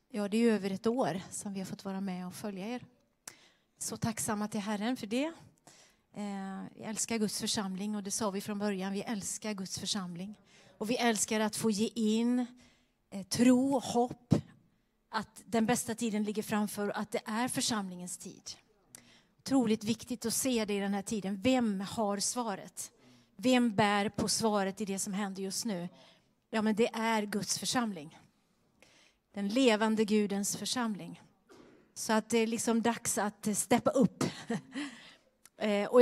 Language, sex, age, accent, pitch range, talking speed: Swedish, female, 30-49, native, 205-235 Hz, 165 wpm